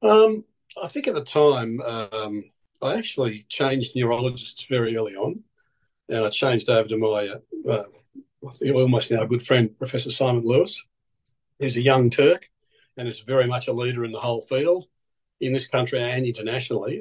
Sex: male